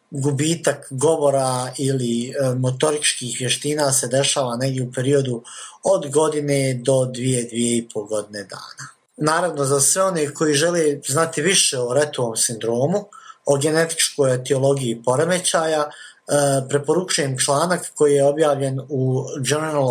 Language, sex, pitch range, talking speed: Croatian, male, 125-155 Hz, 120 wpm